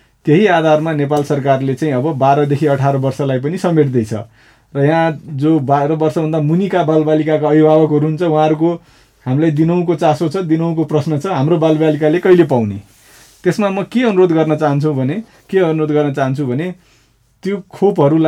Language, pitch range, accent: English, 140-175 Hz, Indian